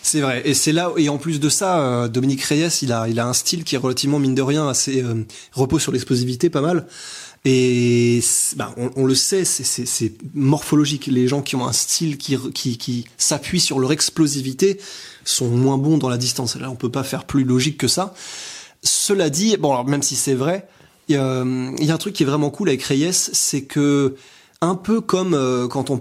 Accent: French